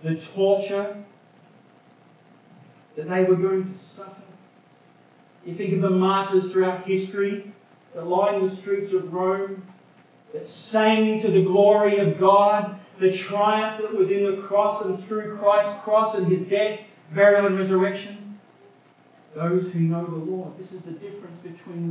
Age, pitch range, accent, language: 40-59, 180-205 Hz, Australian, English